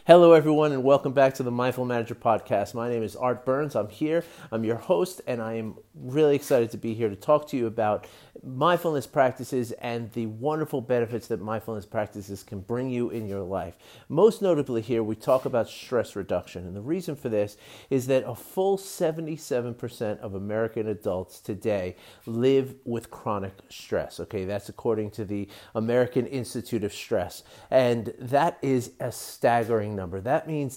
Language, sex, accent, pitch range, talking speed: English, male, American, 110-140 Hz, 175 wpm